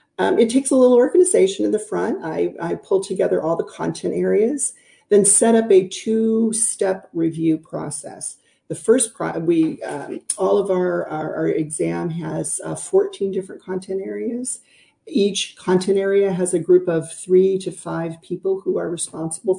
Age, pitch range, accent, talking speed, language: 50-69, 160-200 Hz, American, 160 wpm, English